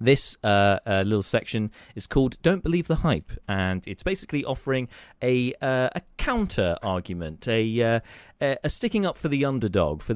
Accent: British